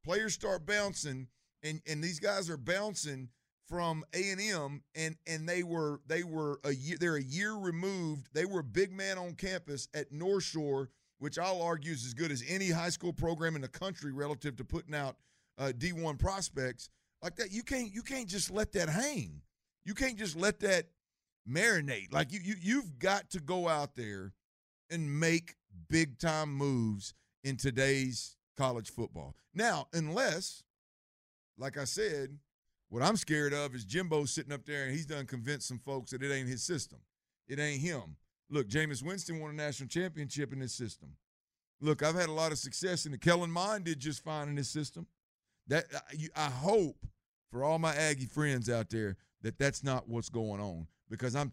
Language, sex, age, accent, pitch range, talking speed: English, male, 50-69, American, 135-175 Hz, 190 wpm